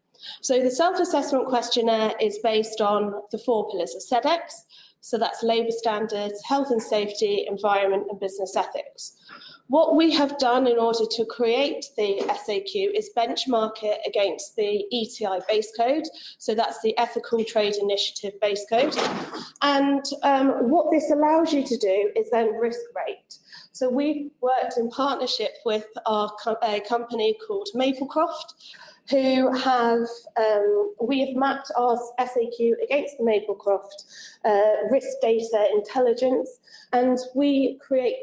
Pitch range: 215-275 Hz